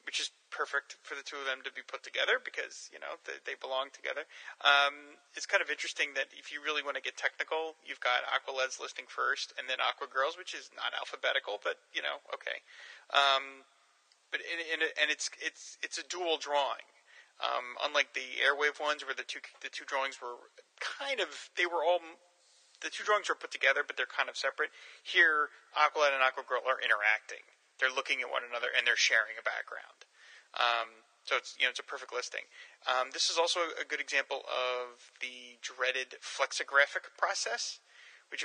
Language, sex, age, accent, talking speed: English, male, 30-49, American, 195 wpm